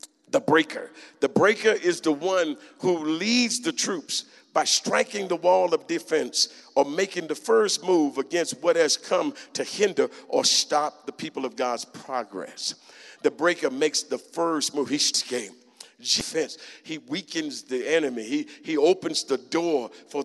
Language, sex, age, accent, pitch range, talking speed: English, male, 50-69, American, 165-255 Hz, 160 wpm